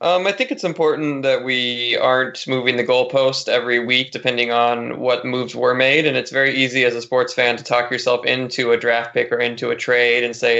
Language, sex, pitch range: English, male, 120-130 Hz